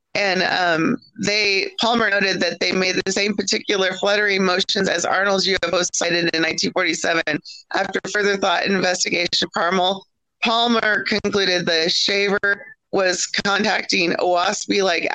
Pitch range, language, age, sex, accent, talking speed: 175-205 Hz, English, 30-49, female, American, 125 wpm